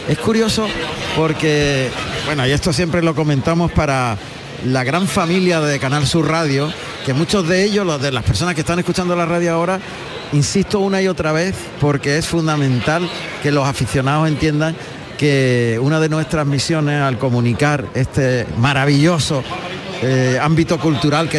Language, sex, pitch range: Spanish, male, 145-175 Hz